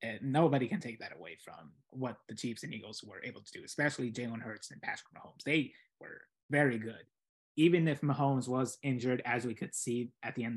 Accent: American